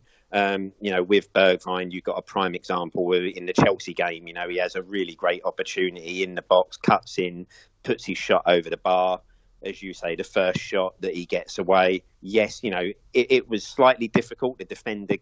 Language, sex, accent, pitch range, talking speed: English, male, British, 90-100 Hz, 210 wpm